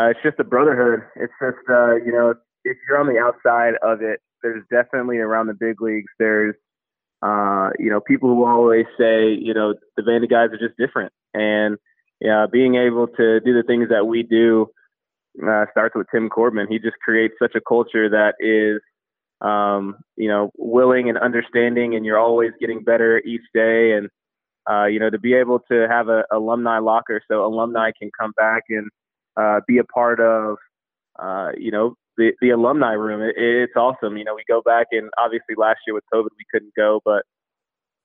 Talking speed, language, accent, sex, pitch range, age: 200 wpm, English, American, male, 110-120 Hz, 20-39